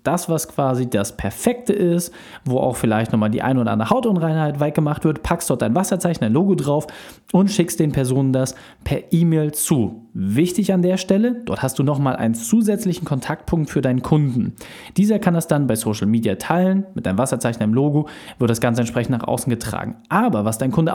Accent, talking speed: German, 205 wpm